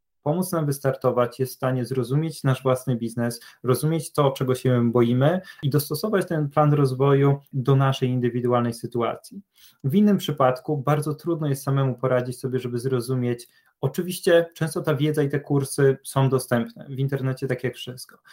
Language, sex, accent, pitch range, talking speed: Polish, male, native, 125-150 Hz, 160 wpm